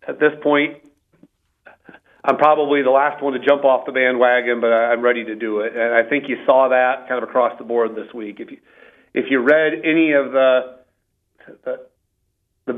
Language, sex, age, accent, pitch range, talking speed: English, male, 40-59, American, 115-135 Hz, 195 wpm